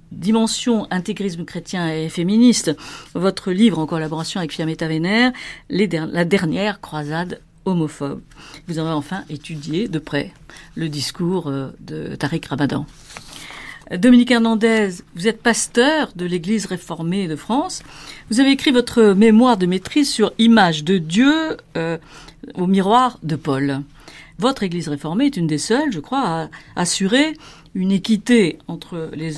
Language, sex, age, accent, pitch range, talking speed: French, female, 50-69, French, 155-210 Hz, 140 wpm